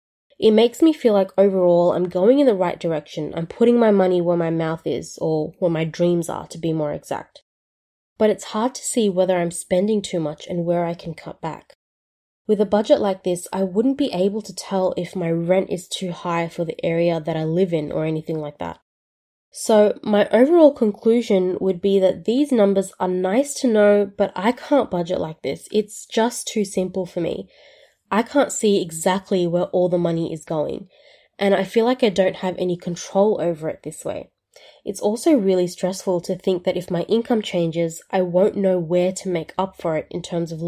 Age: 20-39